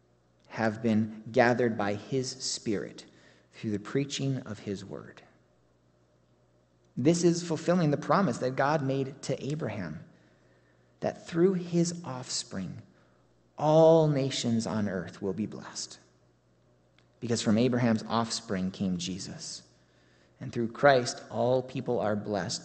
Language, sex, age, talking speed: English, male, 30-49, 120 wpm